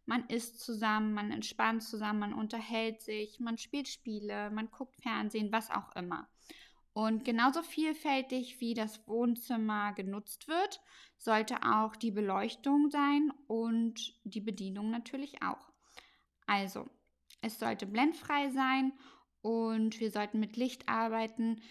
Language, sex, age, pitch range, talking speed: German, female, 10-29, 215-260 Hz, 130 wpm